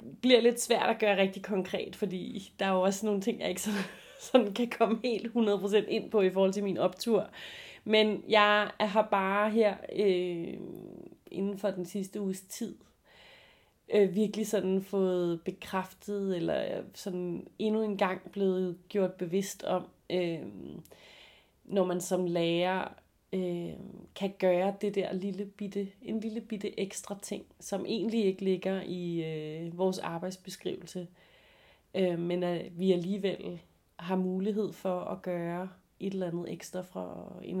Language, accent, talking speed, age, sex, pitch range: Danish, native, 150 wpm, 30-49, female, 180-205 Hz